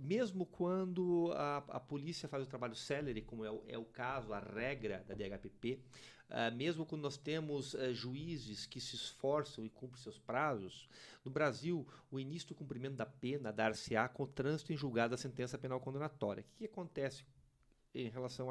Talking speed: 190 wpm